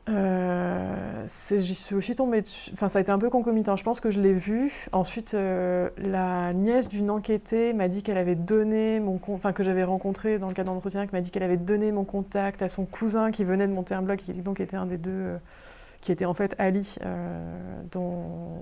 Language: French